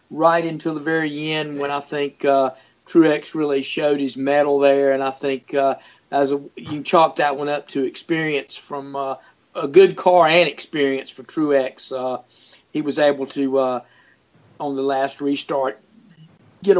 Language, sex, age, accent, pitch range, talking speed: English, male, 50-69, American, 135-160 Hz, 170 wpm